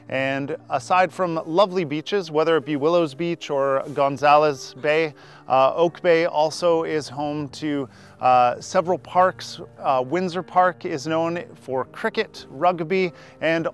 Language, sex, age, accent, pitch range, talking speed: English, male, 30-49, American, 145-180 Hz, 140 wpm